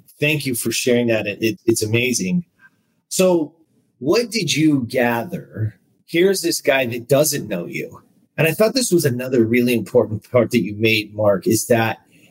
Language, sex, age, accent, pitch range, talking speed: English, male, 30-49, American, 115-160 Hz, 165 wpm